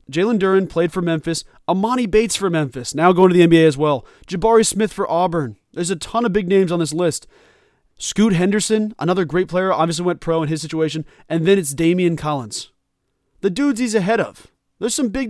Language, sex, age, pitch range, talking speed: English, male, 20-39, 160-210 Hz, 210 wpm